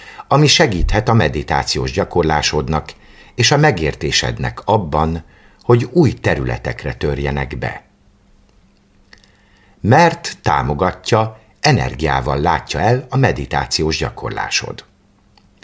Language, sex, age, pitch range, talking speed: Hungarian, male, 50-69, 75-115 Hz, 85 wpm